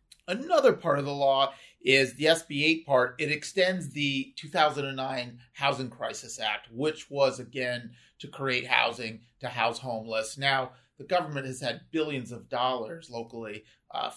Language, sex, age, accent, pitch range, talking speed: English, male, 30-49, American, 120-150 Hz, 150 wpm